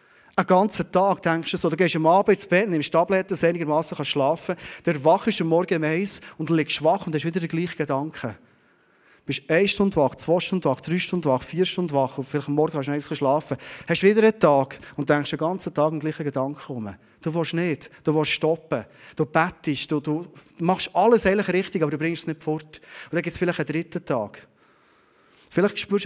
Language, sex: German, male